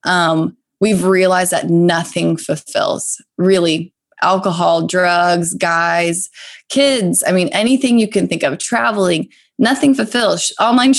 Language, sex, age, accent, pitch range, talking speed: English, female, 20-39, American, 180-230 Hz, 120 wpm